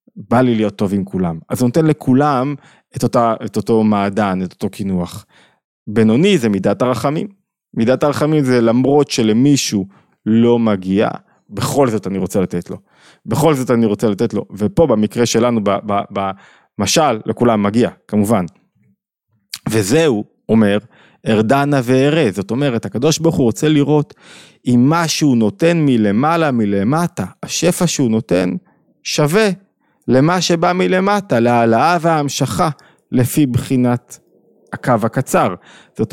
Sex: male